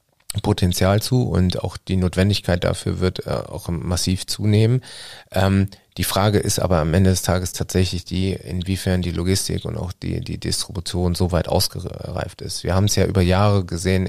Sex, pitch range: male, 90-100 Hz